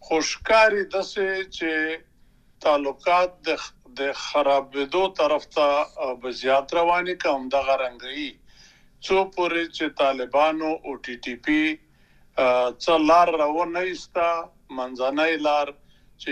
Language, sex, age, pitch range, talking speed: Urdu, male, 50-69, 140-170 Hz, 105 wpm